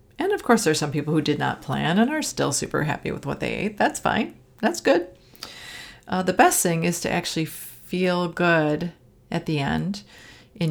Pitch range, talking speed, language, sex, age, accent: 160-210 Hz, 205 wpm, English, female, 40-59, American